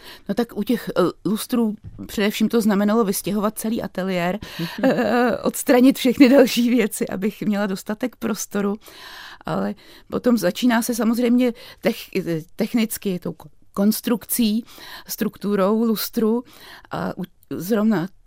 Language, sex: Czech, female